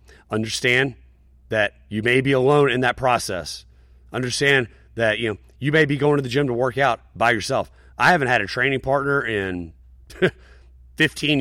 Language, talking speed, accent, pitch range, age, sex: English, 175 wpm, American, 100-130 Hz, 30-49, male